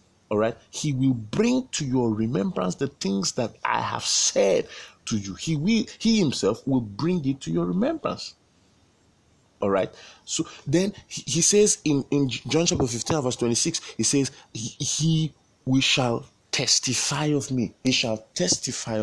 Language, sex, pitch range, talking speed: English, male, 110-145 Hz, 160 wpm